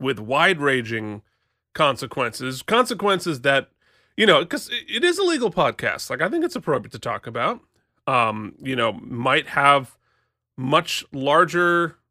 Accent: American